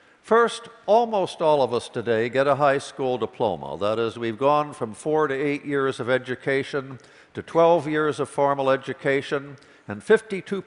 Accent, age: American, 60-79